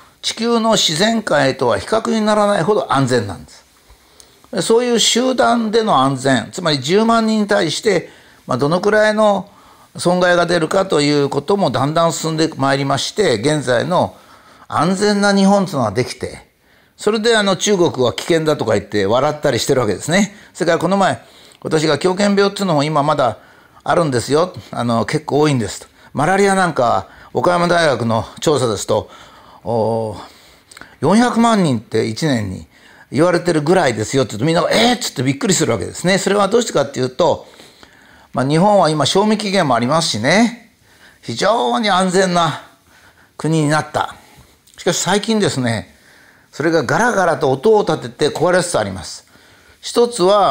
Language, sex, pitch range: Japanese, male, 140-205 Hz